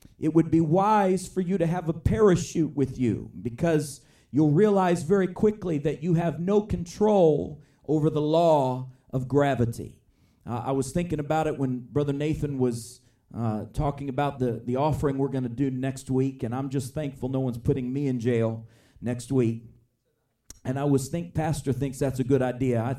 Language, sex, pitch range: English, male, 125-155 Hz